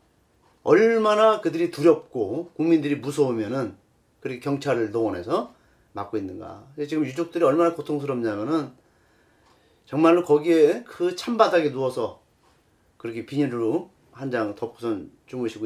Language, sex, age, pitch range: Korean, male, 40-59, 140-225 Hz